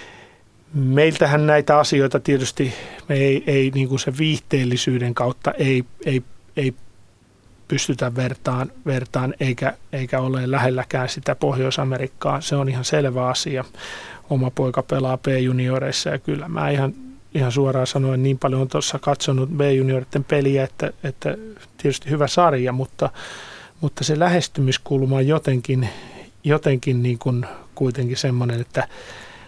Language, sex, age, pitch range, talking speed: Finnish, male, 30-49, 130-150 Hz, 130 wpm